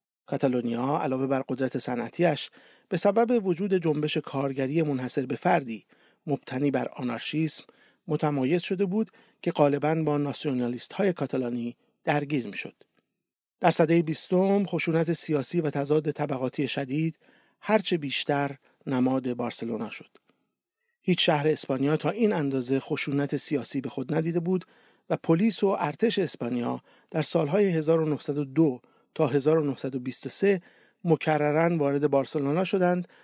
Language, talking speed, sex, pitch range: English, 125 wpm, male, 135-180 Hz